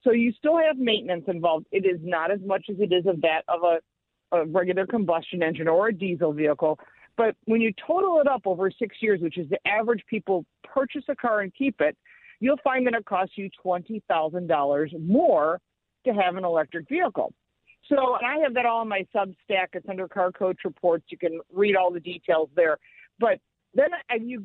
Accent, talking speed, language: American, 205 wpm, English